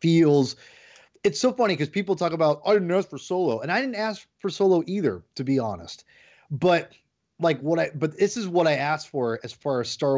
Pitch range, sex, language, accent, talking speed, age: 125-160 Hz, male, English, American, 230 wpm, 30-49